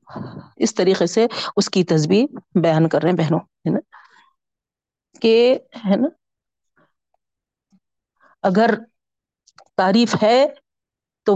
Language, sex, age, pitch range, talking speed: Urdu, female, 40-59, 195-245 Hz, 105 wpm